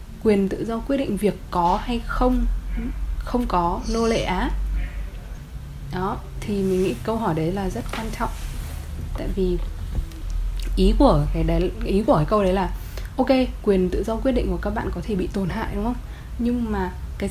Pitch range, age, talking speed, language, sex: 165-215 Hz, 10-29, 195 wpm, Vietnamese, female